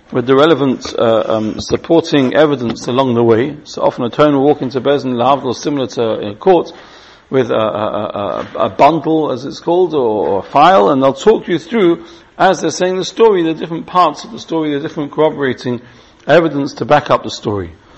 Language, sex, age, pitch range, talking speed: English, male, 40-59, 130-160 Hz, 205 wpm